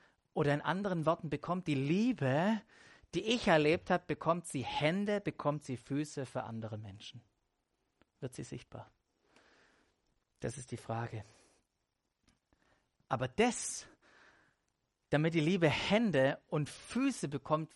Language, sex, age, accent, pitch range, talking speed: German, male, 40-59, German, 135-190 Hz, 120 wpm